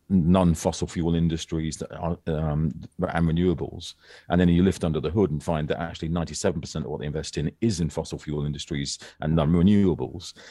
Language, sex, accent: English, male, British